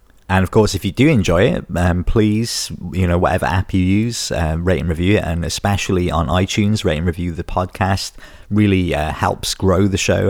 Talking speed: 210 wpm